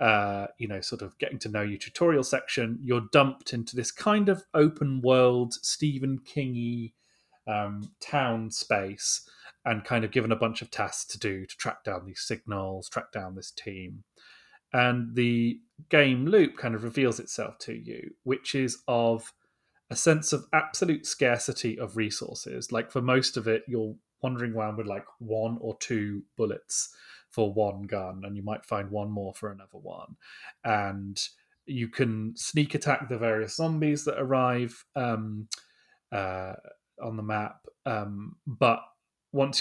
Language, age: English, 30-49